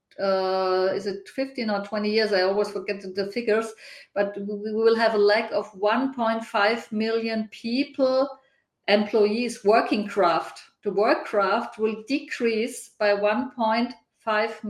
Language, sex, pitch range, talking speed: English, female, 200-225 Hz, 135 wpm